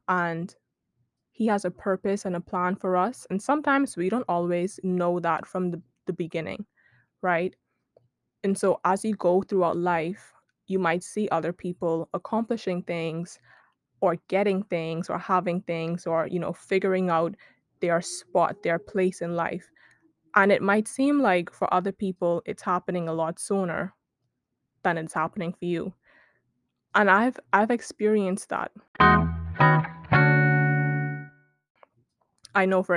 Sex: female